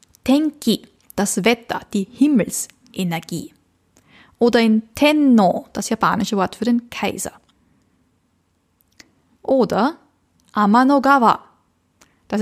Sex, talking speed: female, 80 wpm